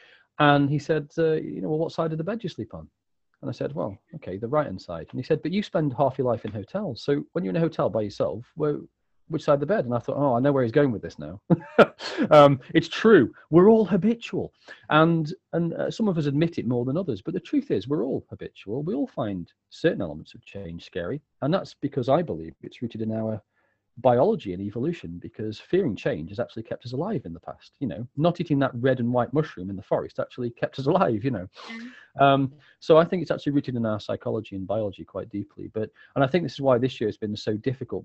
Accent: British